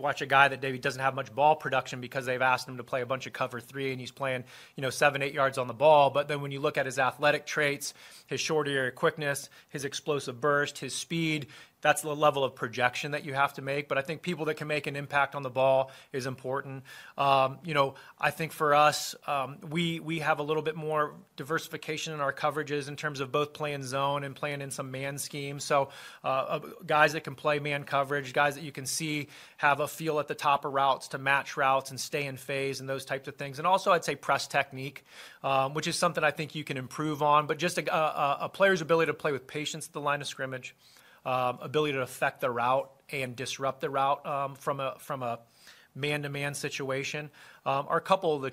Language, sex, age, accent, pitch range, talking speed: English, male, 30-49, American, 135-150 Hz, 240 wpm